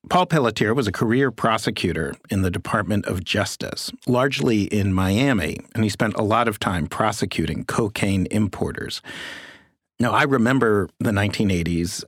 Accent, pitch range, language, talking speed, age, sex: American, 95-120 Hz, English, 145 wpm, 40-59, male